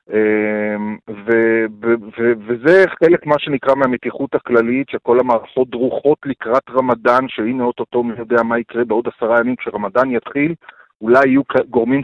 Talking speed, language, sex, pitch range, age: 145 wpm, Hebrew, male, 115-145 Hz, 40-59